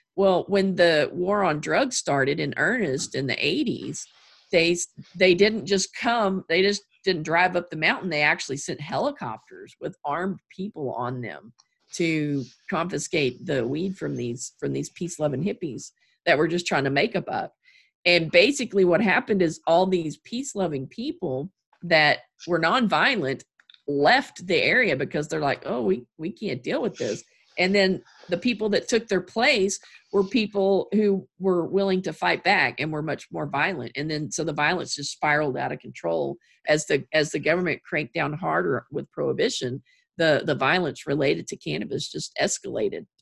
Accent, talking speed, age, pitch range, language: American, 170 wpm, 50-69, 150-200 Hz, English